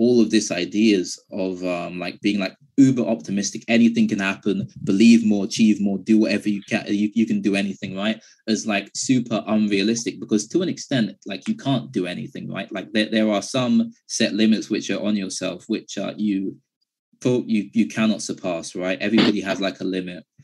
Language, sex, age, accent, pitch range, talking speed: English, male, 20-39, British, 100-120 Hz, 195 wpm